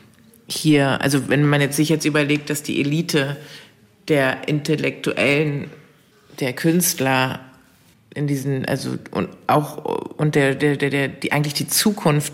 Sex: female